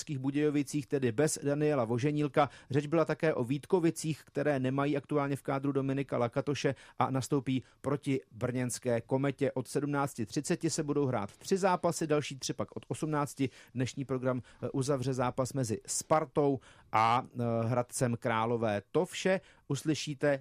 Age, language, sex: 40-59, Czech, male